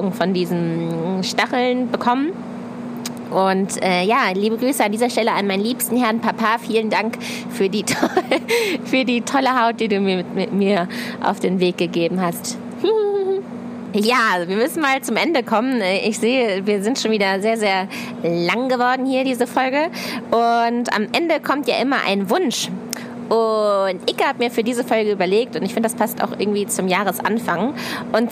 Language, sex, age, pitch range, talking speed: German, female, 20-39, 205-245 Hz, 175 wpm